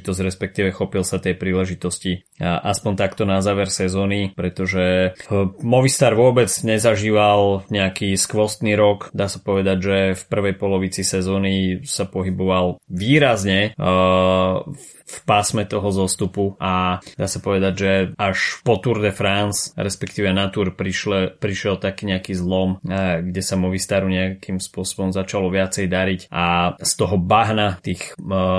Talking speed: 130 wpm